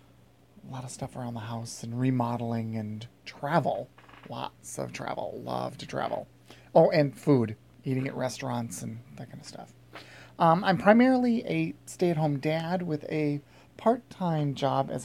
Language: English